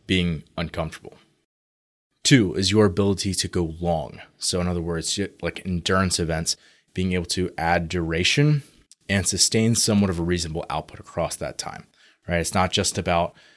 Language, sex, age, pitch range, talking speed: English, male, 20-39, 85-95 Hz, 160 wpm